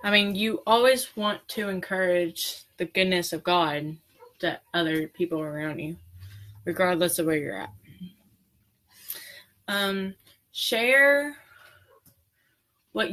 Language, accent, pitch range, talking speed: English, American, 165-205 Hz, 110 wpm